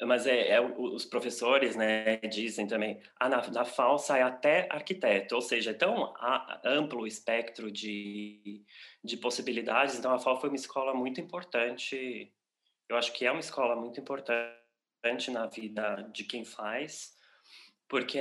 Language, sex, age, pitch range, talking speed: Portuguese, male, 20-39, 110-125 Hz, 150 wpm